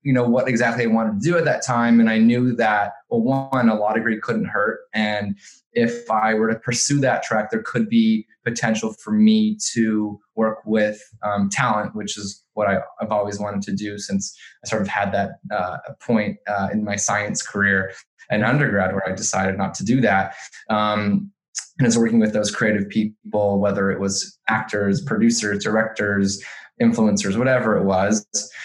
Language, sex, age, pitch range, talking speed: English, male, 20-39, 100-120 Hz, 185 wpm